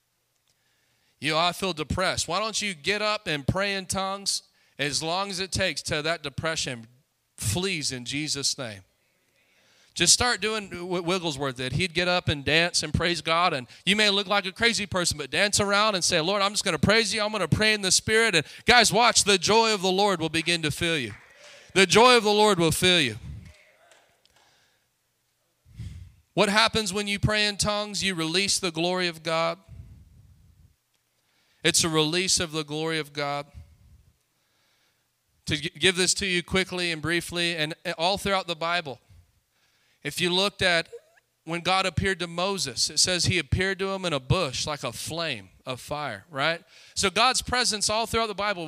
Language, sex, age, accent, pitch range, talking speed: English, male, 30-49, American, 150-205 Hz, 185 wpm